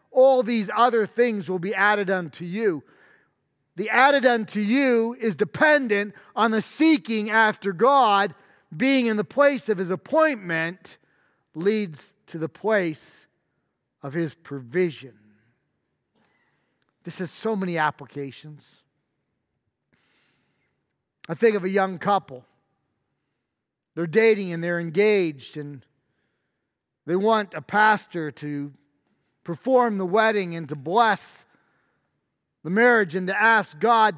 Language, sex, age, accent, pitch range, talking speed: English, male, 40-59, American, 165-220 Hz, 120 wpm